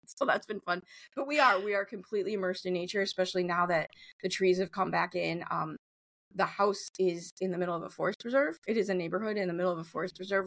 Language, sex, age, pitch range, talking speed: English, female, 30-49, 170-205 Hz, 250 wpm